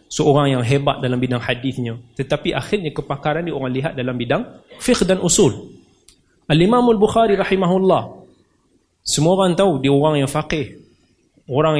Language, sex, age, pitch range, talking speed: Malay, male, 30-49, 135-195 Hz, 155 wpm